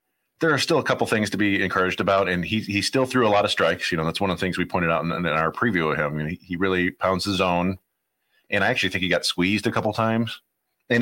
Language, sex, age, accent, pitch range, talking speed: English, male, 30-49, American, 90-115 Hz, 285 wpm